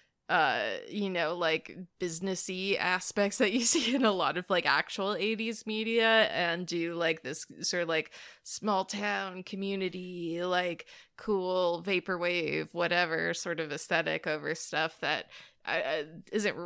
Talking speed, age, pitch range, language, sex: 135 wpm, 20-39, 165-200 Hz, English, female